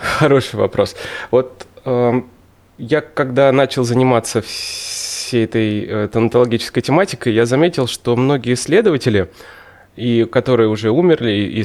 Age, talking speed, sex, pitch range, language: 20-39, 115 wpm, male, 105-135 Hz, Russian